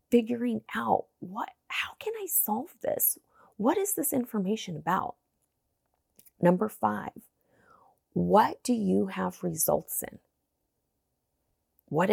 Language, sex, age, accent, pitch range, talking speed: English, female, 30-49, American, 175-255 Hz, 110 wpm